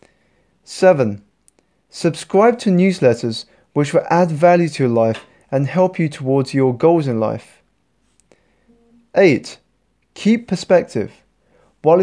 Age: 20-39